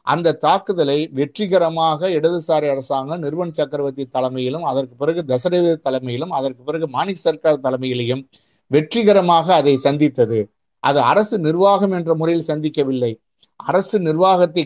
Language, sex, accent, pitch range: Tamil, male, native, 135-175 Hz